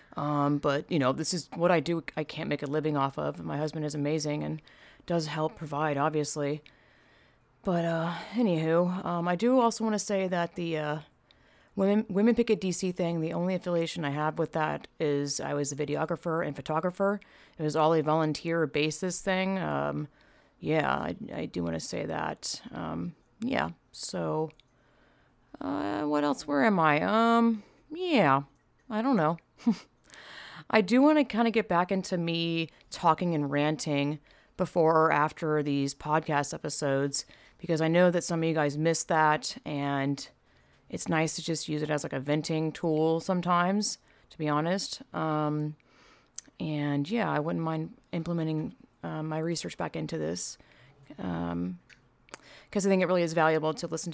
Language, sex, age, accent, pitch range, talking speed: English, female, 30-49, American, 150-175 Hz, 175 wpm